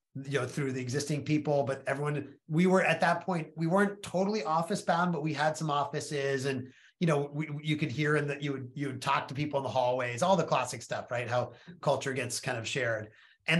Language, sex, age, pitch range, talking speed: English, male, 30-49, 130-165 Hz, 240 wpm